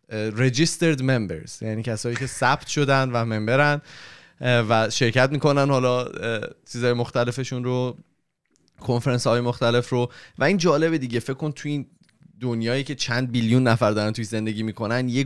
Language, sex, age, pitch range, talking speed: Persian, male, 20-39, 105-135 Hz, 150 wpm